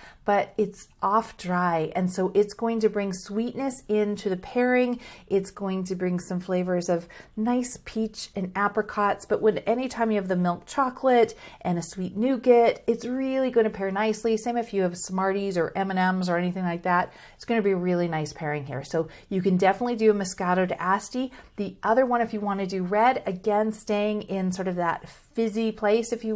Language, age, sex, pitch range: English, 40-59, female, 180-215 Hz